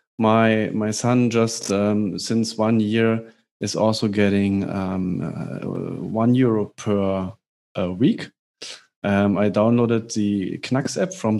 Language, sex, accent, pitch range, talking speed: English, male, German, 100-115 Hz, 130 wpm